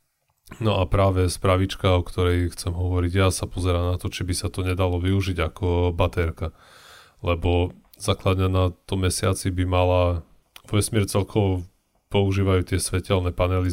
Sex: male